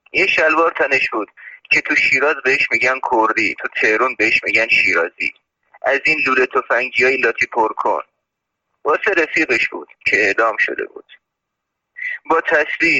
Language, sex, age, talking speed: Persian, male, 30-49, 145 wpm